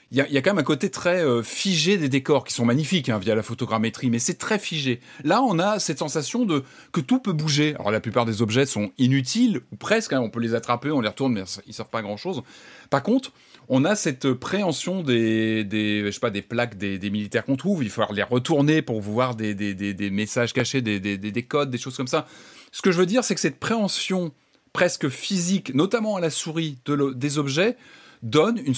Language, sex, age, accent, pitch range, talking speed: French, male, 30-49, French, 115-160 Hz, 240 wpm